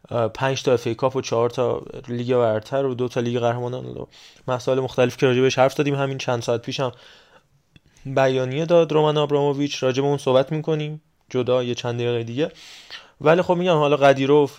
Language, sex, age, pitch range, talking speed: Persian, male, 20-39, 125-145 Hz, 175 wpm